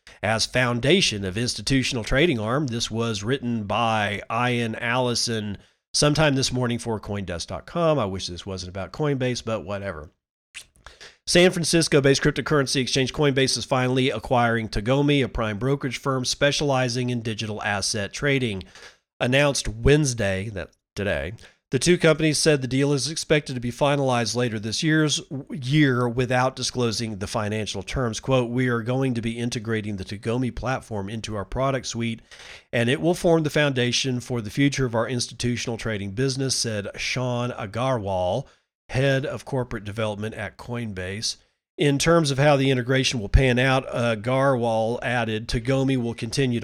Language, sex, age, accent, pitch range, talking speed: English, male, 40-59, American, 110-135 Hz, 155 wpm